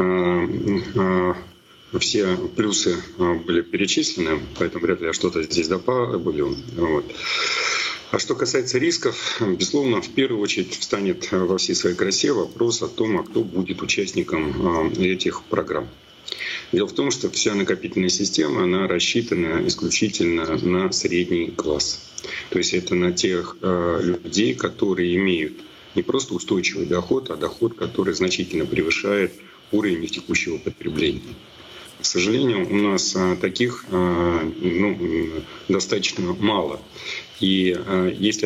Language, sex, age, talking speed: Russian, male, 40-59, 115 wpm